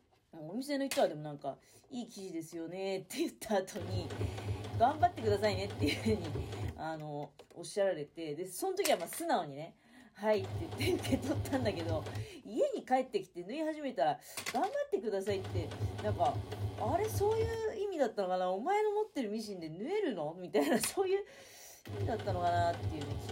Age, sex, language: 40-59, female, Japanese